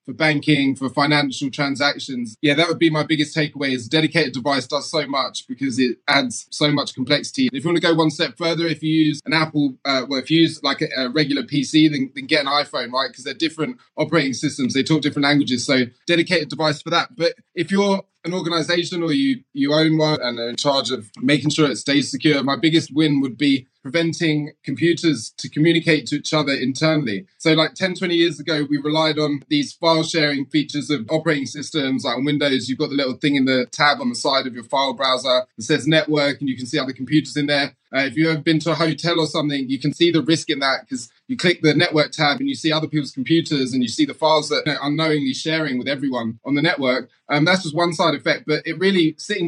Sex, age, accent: male, 20-39, British